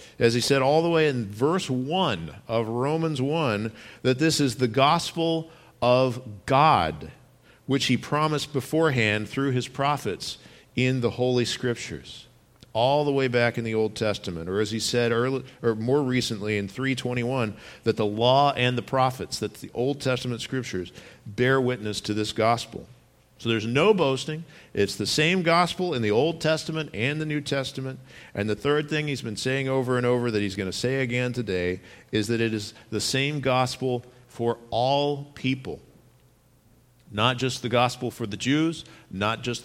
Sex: male